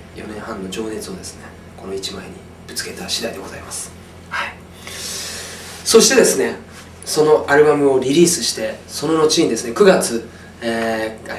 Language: Japanese